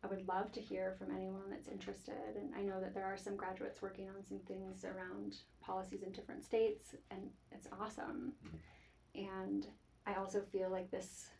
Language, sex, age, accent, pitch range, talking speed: English, female, 30-49, American, 160-210 Hz, 185 wpm